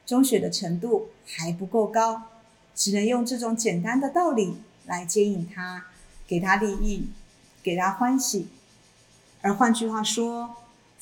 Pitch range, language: 185-225 Hz, Chinese